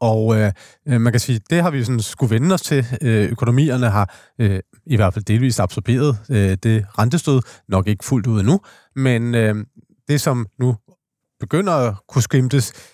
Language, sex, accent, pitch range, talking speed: Danish, male, native, 105-125 Hz, 180 wpm